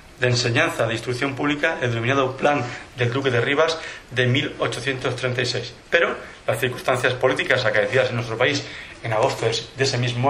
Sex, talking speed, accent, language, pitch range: male, 155 wpm, Spanish, Spanish, 120-140 Hz